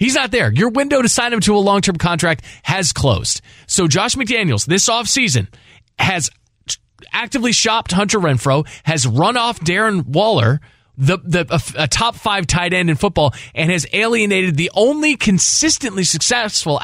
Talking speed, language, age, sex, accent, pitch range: 155 wpm, English, 20-39, male, American, 120-180 Hz